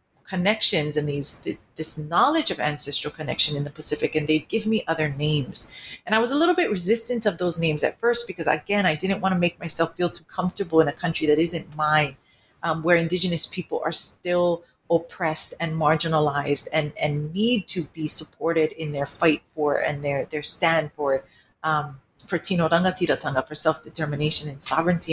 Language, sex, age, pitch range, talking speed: English, female, 40-59, 150-195 Hz, 185 wpm